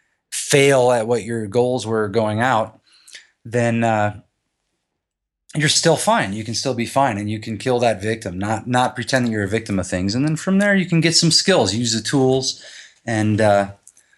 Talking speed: 200 wpm